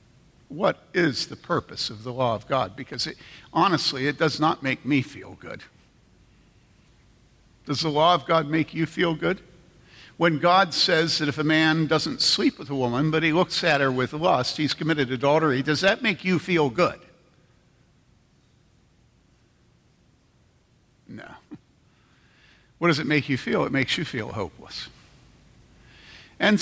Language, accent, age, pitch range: English, American, 50-69, 135-170 Hz